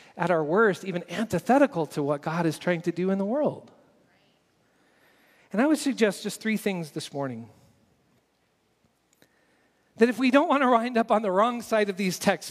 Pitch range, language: 175-220 Hz, English